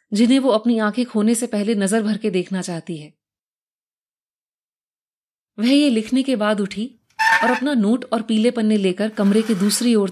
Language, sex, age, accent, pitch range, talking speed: Hindi, female, 30-49, native, 185-245 Hz, 180 wpm